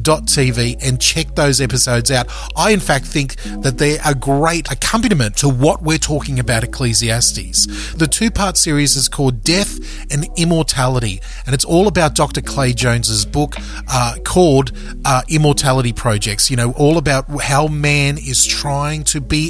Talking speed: 165 wpm